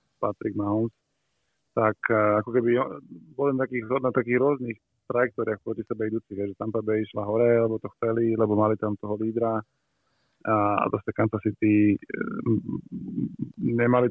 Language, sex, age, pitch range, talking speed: Slovak, male, 30-49, 105-115 Hz, 145 wpm